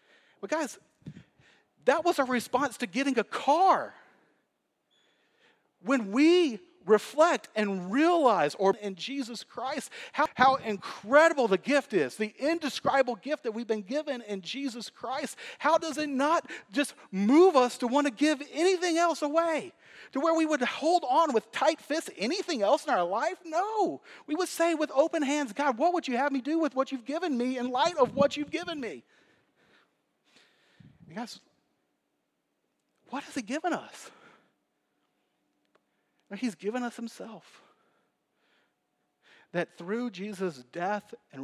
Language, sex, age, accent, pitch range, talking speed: English, male, 40-59, American, 205-305 Hz, 150 wpm